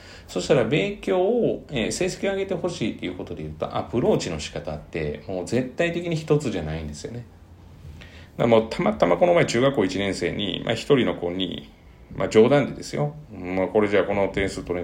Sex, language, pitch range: male, Japanese, 85-115 Hz